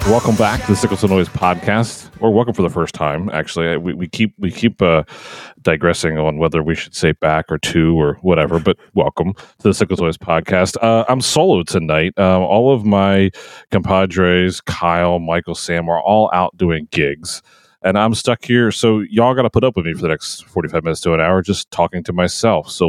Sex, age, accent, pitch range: male, 30-49, American, 85-105 Hz